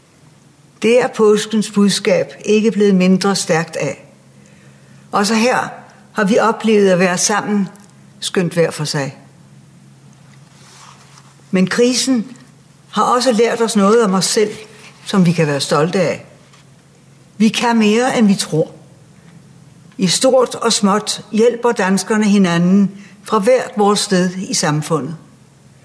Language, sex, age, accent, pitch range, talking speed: Danish, female, 60-79, native, 165-220 Hz, 130 wpm